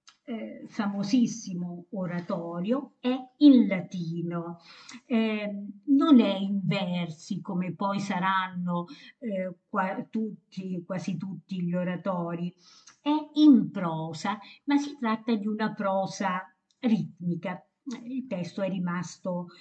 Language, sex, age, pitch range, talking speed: Italian, female, 50-69, 180-235 Hz, 105 wpm